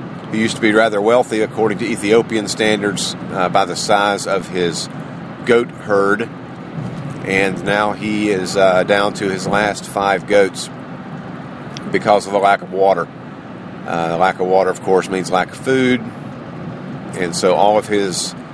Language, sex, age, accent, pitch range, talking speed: English, male, 50-69, American, 90-105 Hz, 160 wpm